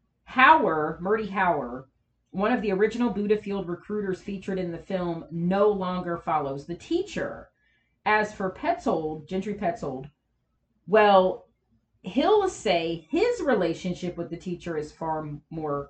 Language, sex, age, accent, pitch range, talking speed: English, female, 40-59, American, 170-215 Hz, 135 wpm